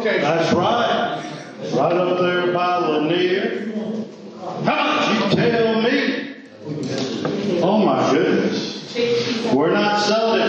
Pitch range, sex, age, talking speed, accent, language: 160-195 Hz, male, 40-59, 105 wpm, American, English